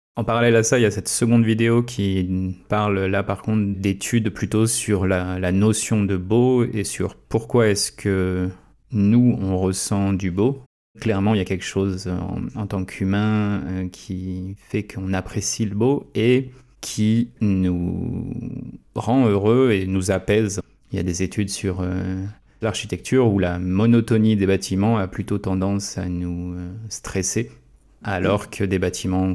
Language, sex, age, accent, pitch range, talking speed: French, male, 30-49, French, 95-110 Hz, 170 wpm